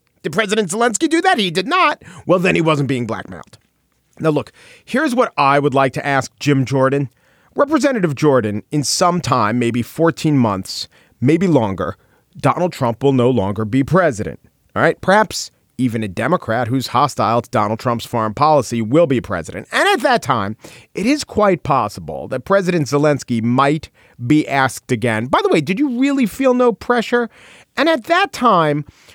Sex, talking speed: male, 175 wpm